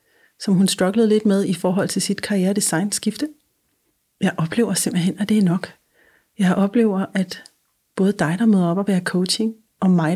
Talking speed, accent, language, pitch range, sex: 185 wpm, native, Danish, 180-215 Hz, female